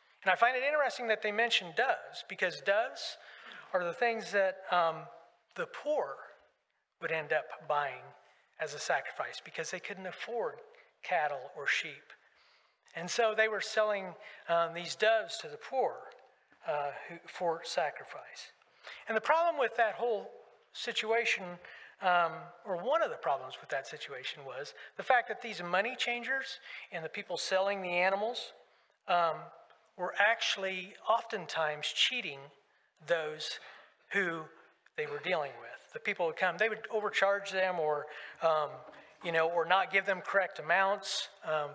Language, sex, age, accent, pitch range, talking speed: English, male, 40-59, American, 170-230 Hz, 150 wpm